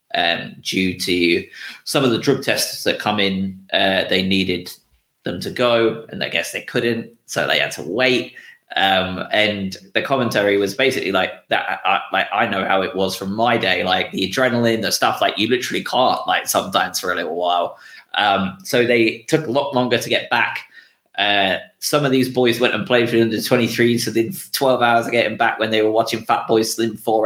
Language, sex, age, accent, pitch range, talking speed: English, male, 20-39, British, 95-120 Hz, 215 wpm